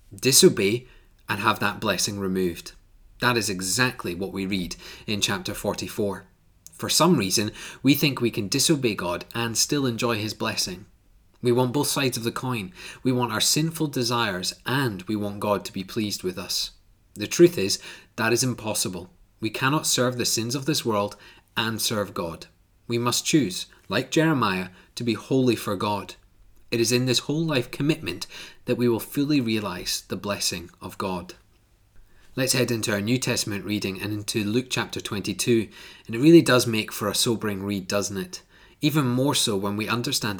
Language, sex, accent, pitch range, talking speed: English, male, British, 100-125 Hz, 180 wpm